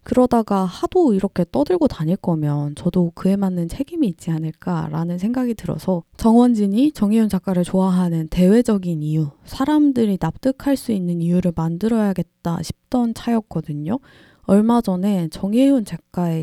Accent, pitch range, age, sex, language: native, 170-230 Hz, 20-39, female, Korean